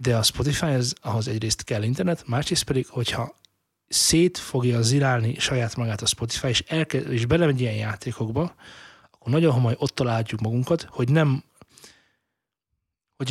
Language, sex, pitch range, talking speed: Hungarian, male, 115-150 Hz, 150 wpm